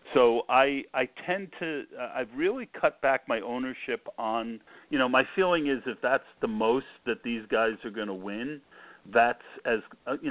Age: 50-69